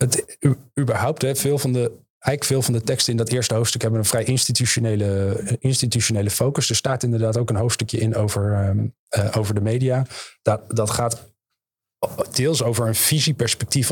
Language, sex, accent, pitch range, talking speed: Dutch, male, Dutch, 110-125 Hz, 175 wpm